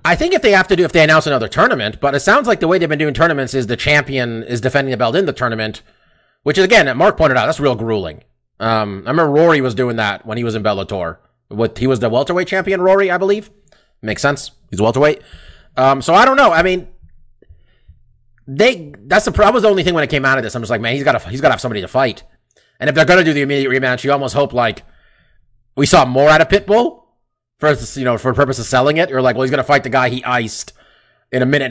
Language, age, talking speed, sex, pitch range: English, 30-49, 270 wpm, male, 120-160 Hz